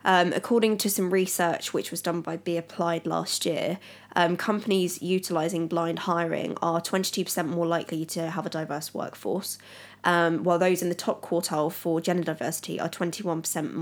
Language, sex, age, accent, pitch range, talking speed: English, female, 20-39, British, 165-185 Hz, 170 wpm